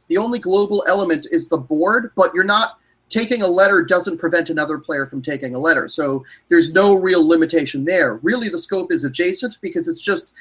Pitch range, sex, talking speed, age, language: 165-215 Hz, male, 200 wpm, 30-49, English